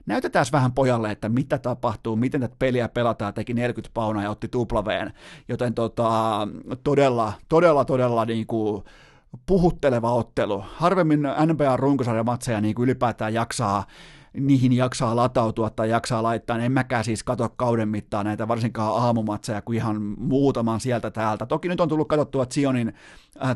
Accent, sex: native, male